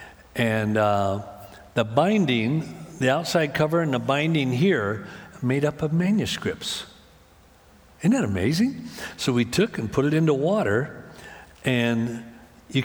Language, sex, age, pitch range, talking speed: English, male, 60-79, 105-165 Hz, 130 wpm